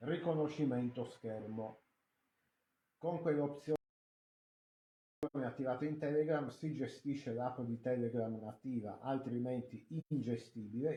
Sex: male